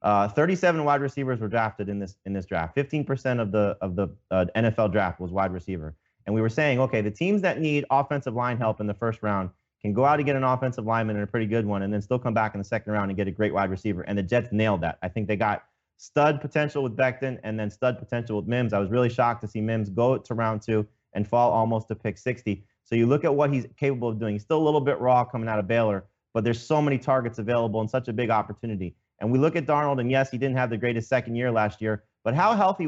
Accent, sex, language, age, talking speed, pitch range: American, male, English, 30-49, 275 wpm, 105-125 Hz